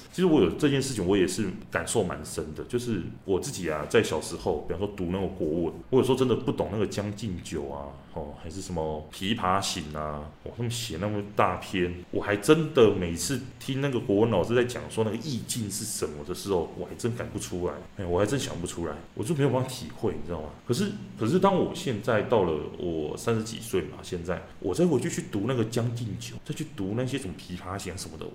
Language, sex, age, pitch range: Chinese, male, 20-39, 90-120 Hz